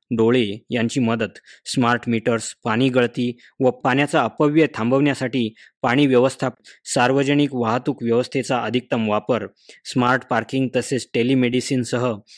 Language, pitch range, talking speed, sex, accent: Marathi, 120-135 Hz, 105 wpm, male, native